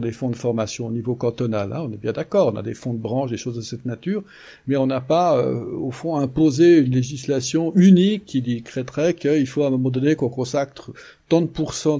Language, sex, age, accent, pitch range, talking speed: French, male, 50-69, French, 120-145 Hz, 235 wpm